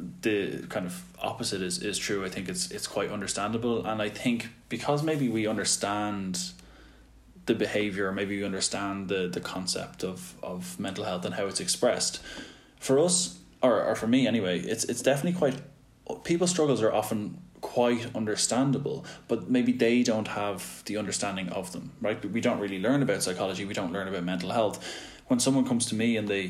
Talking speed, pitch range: 185 wpm, 95-120 Hz